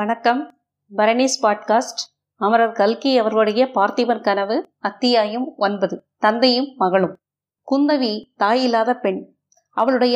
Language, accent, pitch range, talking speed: Tamil, native, 205-255 Hz, 95 wpm